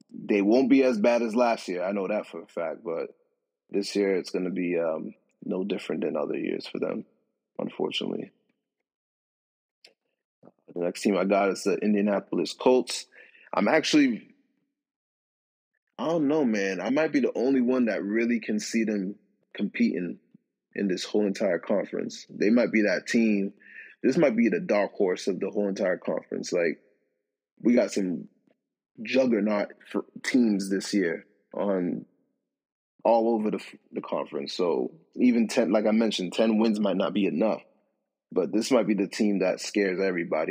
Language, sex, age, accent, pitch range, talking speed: English, male, 20-39, American, 100-120 Hz, 170 wpm